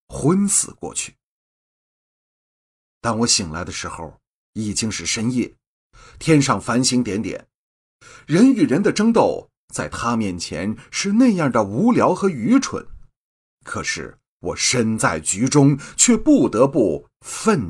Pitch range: 105-165 Hz